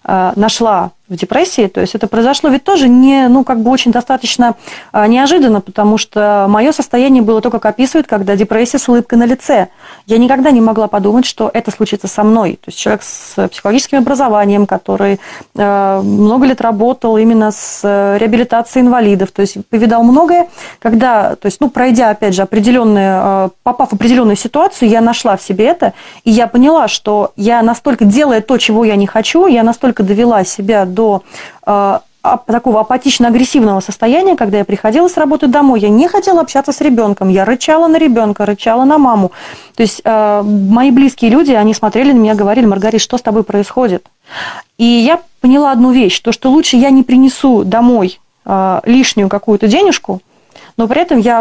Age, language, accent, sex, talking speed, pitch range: 30-49, Russian, native, female, 175 wpm, 210-260 Hz